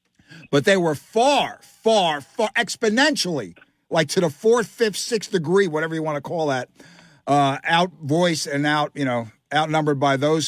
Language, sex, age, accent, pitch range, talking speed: English, male, 50-69, American, 145-195 Hz, 165 wpm